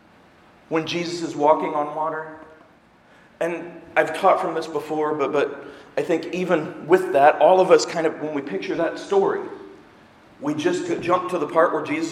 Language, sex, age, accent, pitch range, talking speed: English, male, 40-59, American, 165-275 Hz, 185 wpm